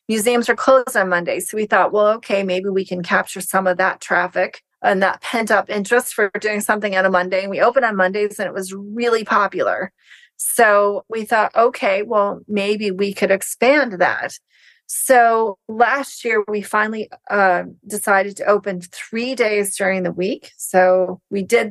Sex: female